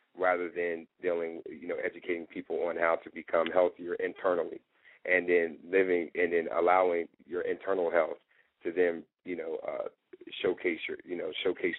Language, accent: English, American